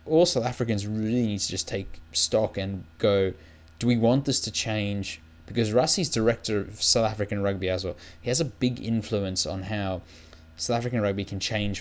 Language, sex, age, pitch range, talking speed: English, male, 20-39, 95-120 Hz, 195 wpm